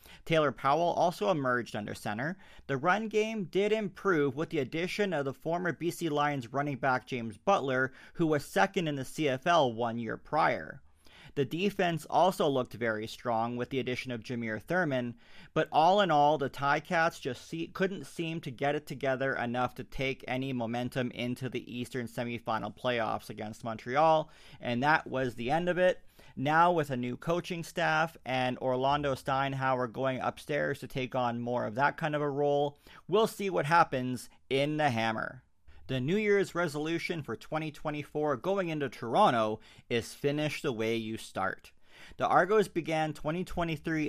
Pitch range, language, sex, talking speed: 125-165 Hz, English, male, 165 wpm